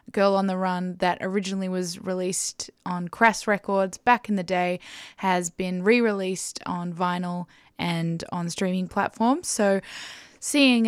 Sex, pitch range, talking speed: female, 185-215 Hz, 150 wpm